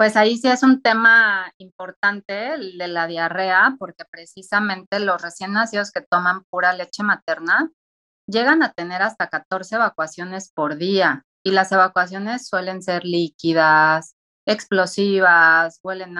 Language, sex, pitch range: Spanish, female, 165-220 Hz